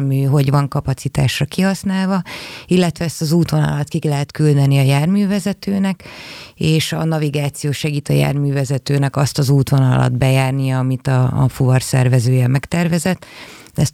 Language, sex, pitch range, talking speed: Hungarian, female, 130-155 Hz, 130 wpm